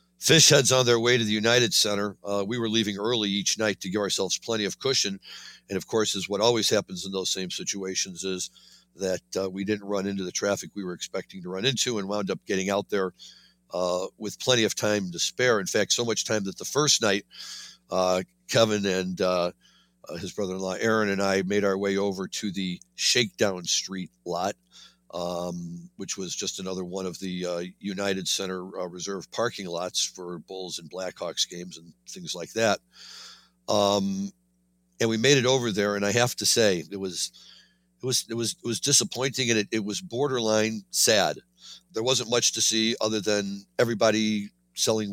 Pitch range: 90-110 Hz